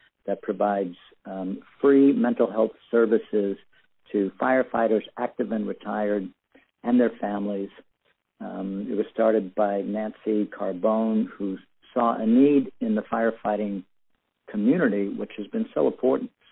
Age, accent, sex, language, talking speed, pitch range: 60-79, American, male, English, 125 wpm, 105-120 Hz